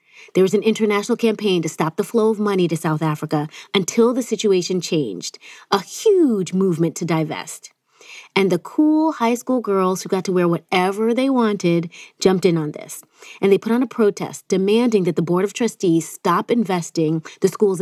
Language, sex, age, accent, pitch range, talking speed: English, female, 30-49, American, 175-230 Hz, 190 wpm